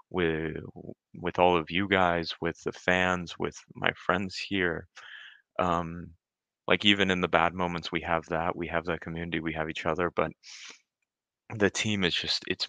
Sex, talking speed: male, 170 wpm